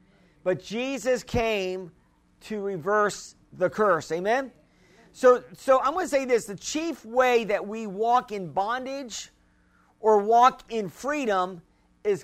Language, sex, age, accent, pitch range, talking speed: English, male, 50-69, American, 195-240 Hz, 135 wpm